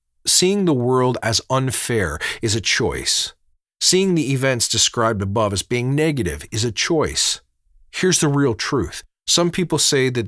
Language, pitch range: English, 105-155 Hz